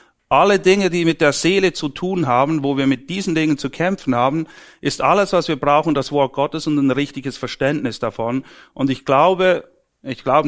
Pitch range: 120-145 Hz